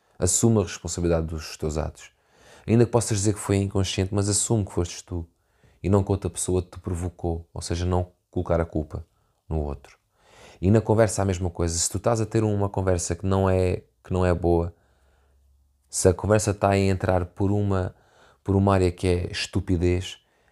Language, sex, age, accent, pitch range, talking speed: Portuguese, male, 20-39, Portuguese, 85-105 Hz, 200 wpm